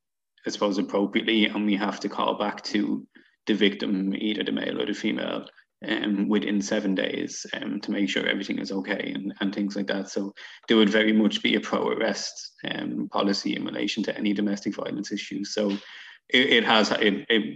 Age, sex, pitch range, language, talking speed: 20-39, male, 100-110 Hz, English, 200 wpm